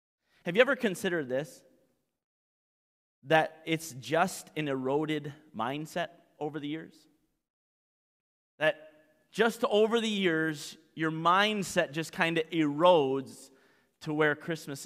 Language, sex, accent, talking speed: English, male, American, 115 wpm